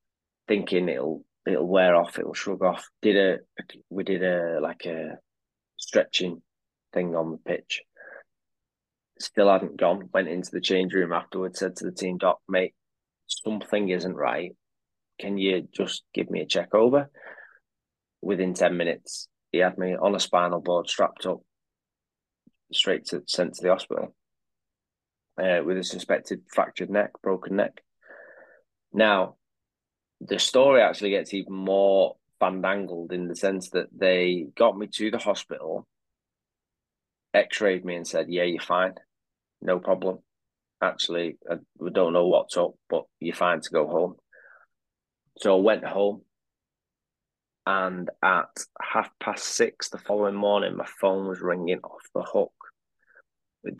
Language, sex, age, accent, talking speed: English, male, 20-39, British, 145 wpm